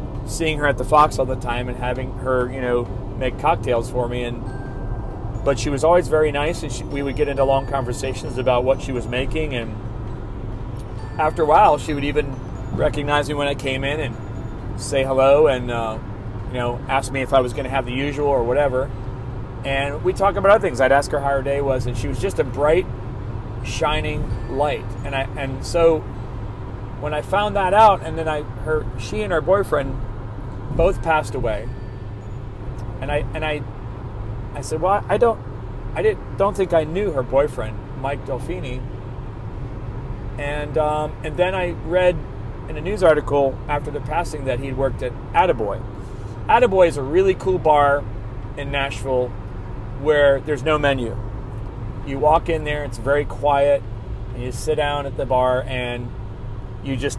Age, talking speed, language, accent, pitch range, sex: 30-49, 185 wpm, English, American, 115-145 Hz, male